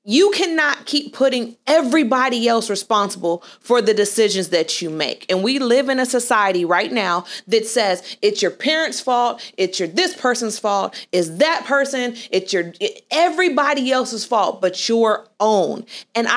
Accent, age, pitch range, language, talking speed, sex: American, 30-49, 205-275 Hz, English, 165 wpm, female